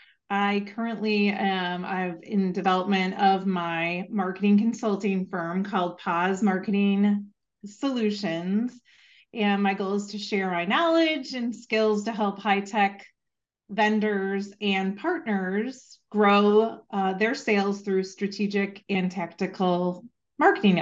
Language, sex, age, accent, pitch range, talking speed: English, female, 30-49, American, 190-230 Hz, 110 wpm